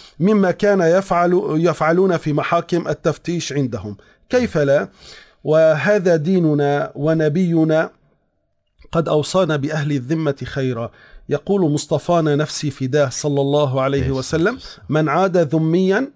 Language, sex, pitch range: Arabic, male, 140-185 Hz